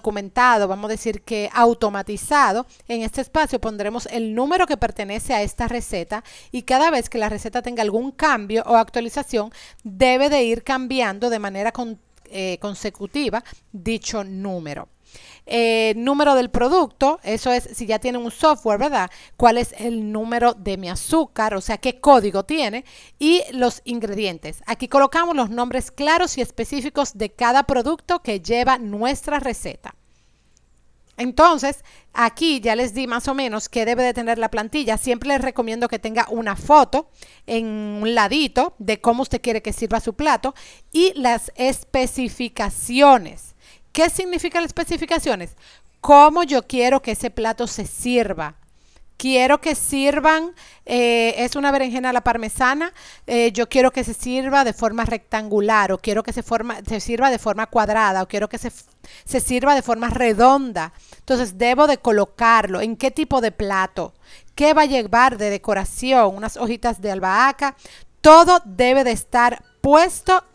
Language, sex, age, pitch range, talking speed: Spanish, female, 40-59, 220-270 Hz, 160 wpm